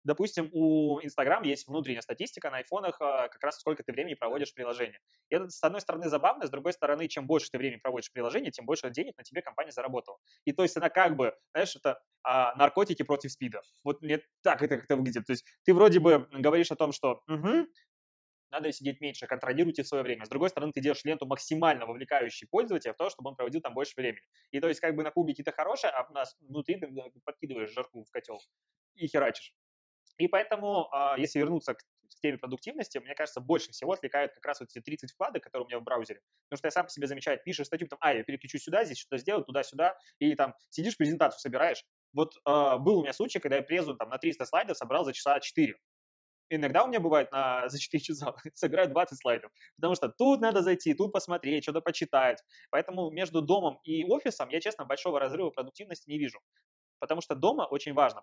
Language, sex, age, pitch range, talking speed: Swedish, male, 20-39, 135-170 Hz, 215 wpm